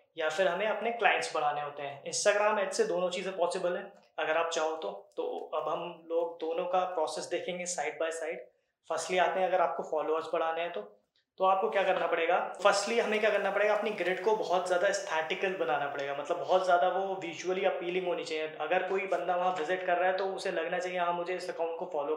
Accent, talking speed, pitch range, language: native, 225 wpm, 170-200 Hz, Hindi